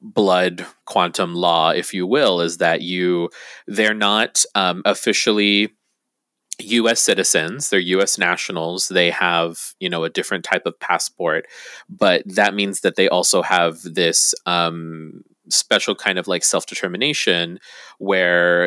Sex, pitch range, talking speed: male, 85-100 Hz, 135 wpm